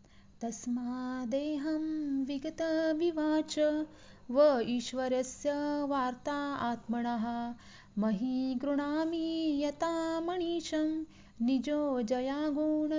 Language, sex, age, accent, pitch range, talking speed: Marathi, female, 30-49, native, 225-275 Hz, 55 wpm